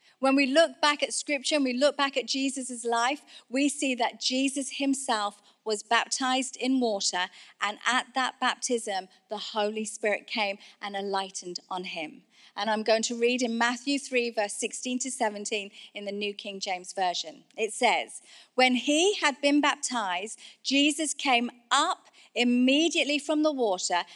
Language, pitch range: English, 210-275 Hz